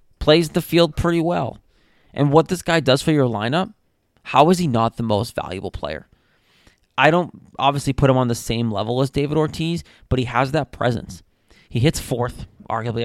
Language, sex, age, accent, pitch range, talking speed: English, male, 20-39, American, 120-150 Hz, 195 wpm